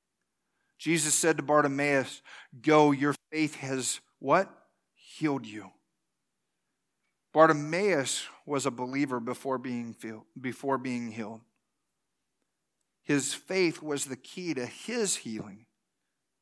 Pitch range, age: 135-180 Hz, 40-59